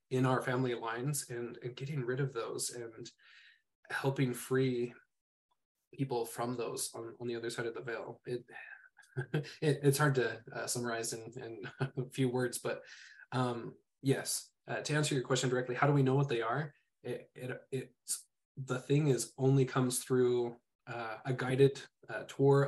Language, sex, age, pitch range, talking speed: English, male, 20-39, 120-140 Hz, 175 wpm